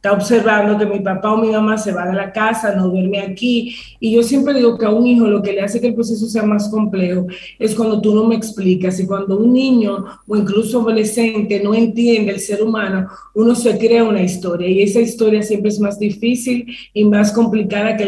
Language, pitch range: Spanish, 195-230 Hz